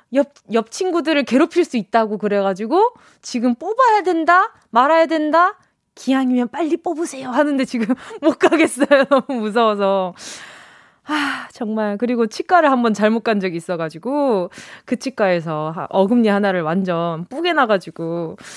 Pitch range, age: 200-305 Hz, 20-39